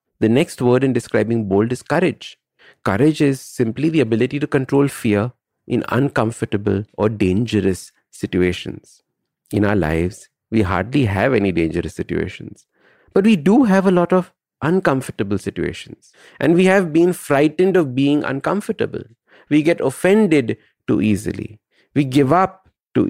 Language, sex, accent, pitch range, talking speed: English, male, Indian, 105-150 Hz, 145 wpm